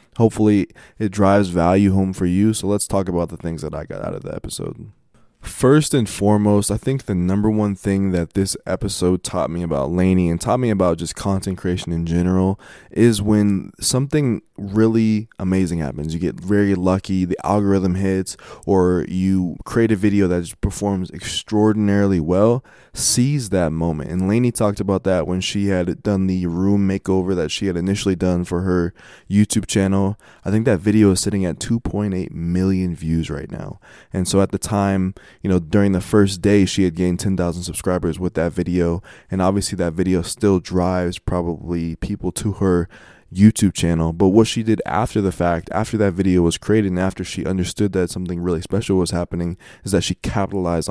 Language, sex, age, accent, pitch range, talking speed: English, male, 20-39, American, 90-105 Hz, 190 wpm